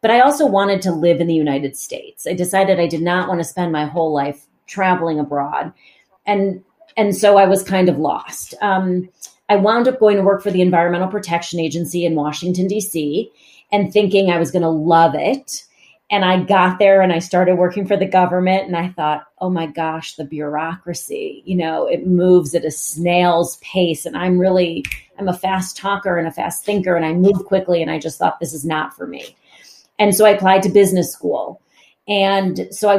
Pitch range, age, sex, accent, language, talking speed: 170-205 Hz, 30-49, female, American, English, 210 wpm